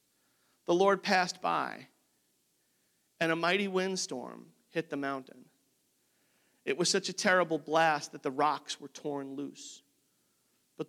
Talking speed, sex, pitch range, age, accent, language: 130 wpm, male, 140-185 Hz, 50-69, American, English